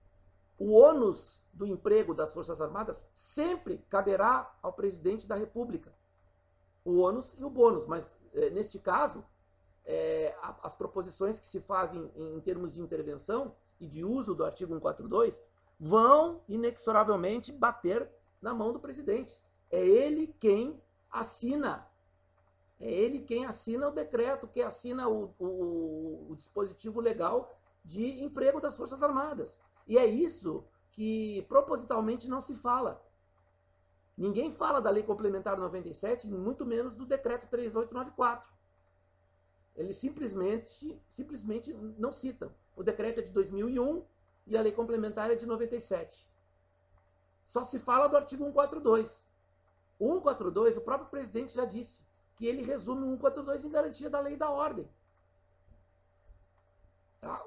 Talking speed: 135 wpm